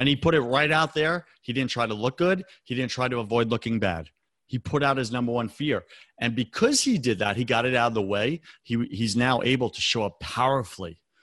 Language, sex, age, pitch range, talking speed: English, male, 40-59, 115-155 Hz, 245 wpm